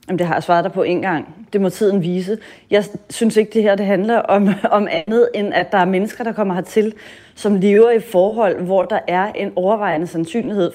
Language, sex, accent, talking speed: Danish, female, native, 230 wpm